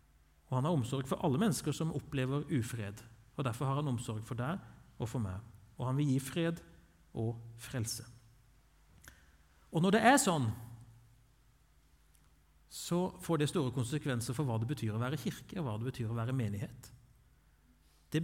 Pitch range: 110-145 Hz